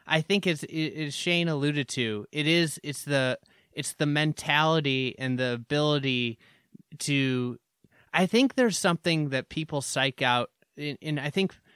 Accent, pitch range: American, 125-160 Hz